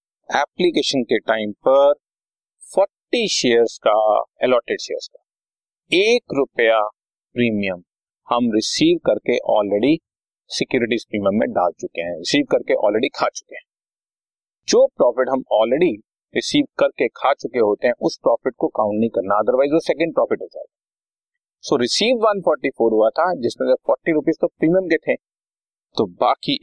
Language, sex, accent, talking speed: Hindi, male, native, 145 wpm